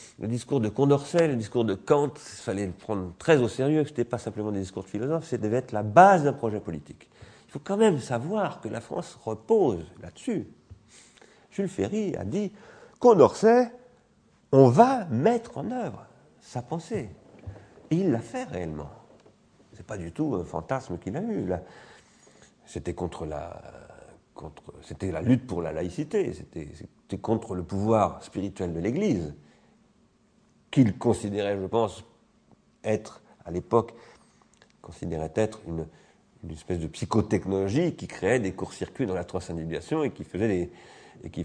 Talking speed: 165 wpm